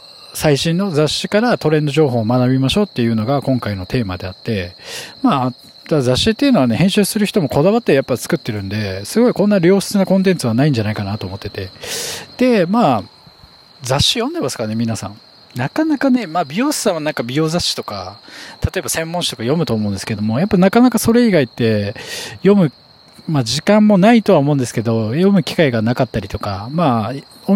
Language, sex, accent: Japanese, male, native